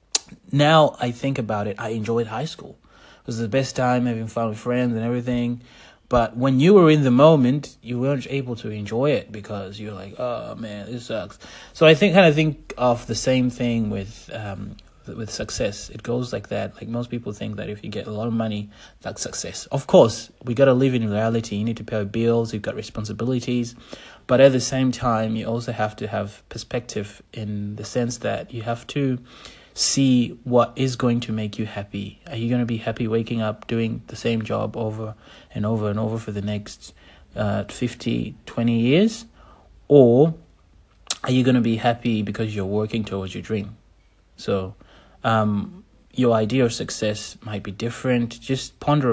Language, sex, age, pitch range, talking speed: English, male, 30-49, 105-125 Hz, 200 wpm